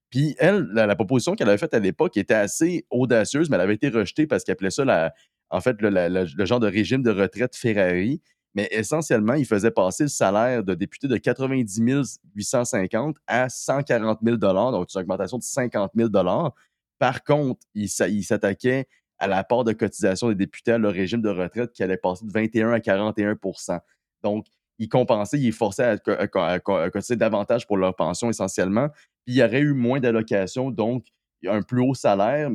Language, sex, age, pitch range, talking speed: French, male, 30-49, 100-125 Hz, 190 wpm